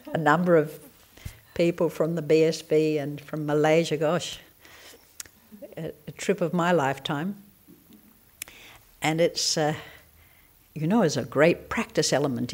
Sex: female